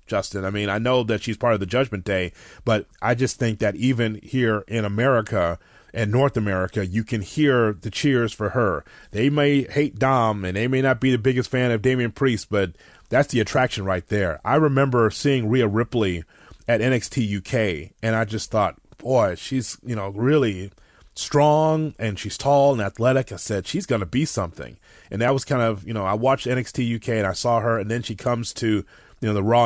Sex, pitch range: male, 105-130 Hz